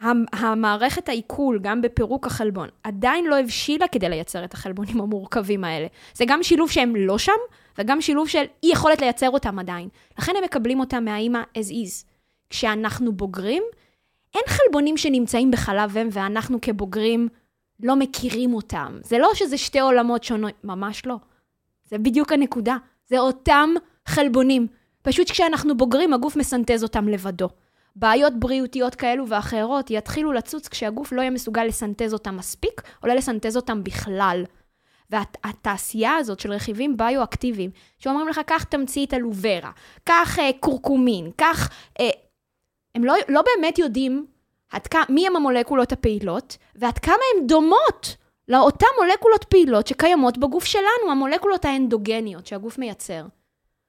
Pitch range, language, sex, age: 220-290 Hz, Hebrew, female, 20-39